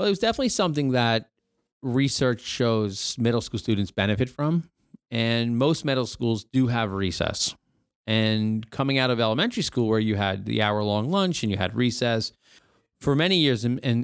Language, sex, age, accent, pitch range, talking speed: English, male, 30-49, American, 105-125 Hz, 180 wpm